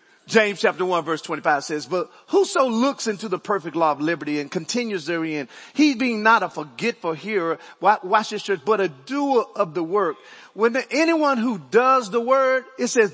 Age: 40-59